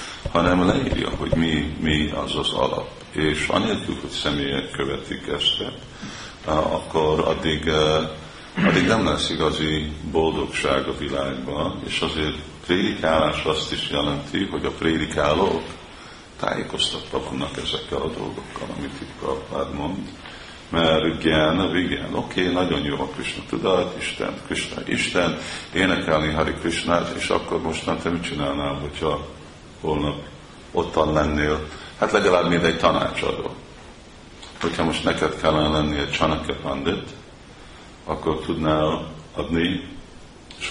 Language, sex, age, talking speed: Hungarian, male, 50-69, 115 wpm